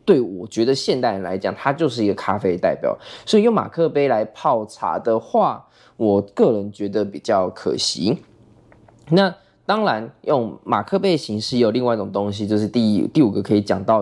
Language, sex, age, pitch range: Chinese, male, 20-39, 105-155 Hz